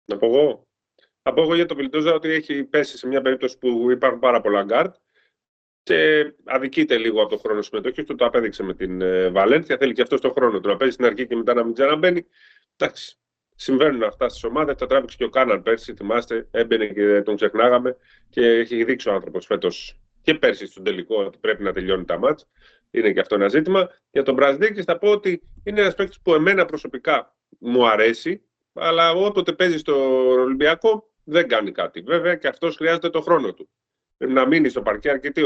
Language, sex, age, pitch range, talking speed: Greek, male, 30-49, 130-200 Hz, 205 wpm